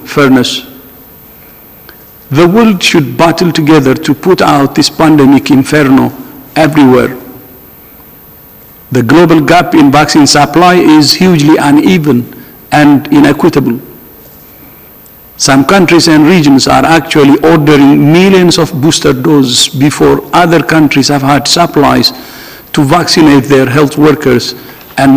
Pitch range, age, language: 135-160 Hz, 60-79, English